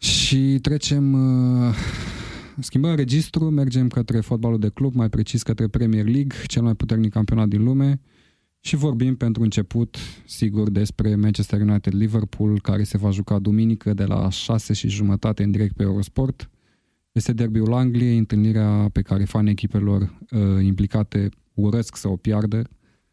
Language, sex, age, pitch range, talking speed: Romanian, male, 20-39, 105-120 Hz, 145 wpm